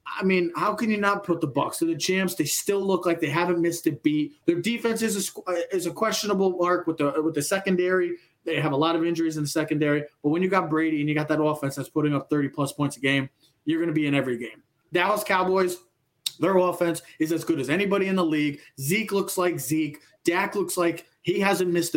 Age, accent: 20-39, American